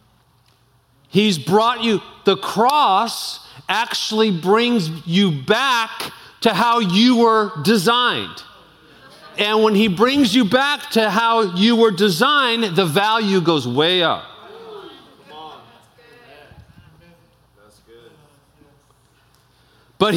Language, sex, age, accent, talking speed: English, male, 50-69, American, 90 wpm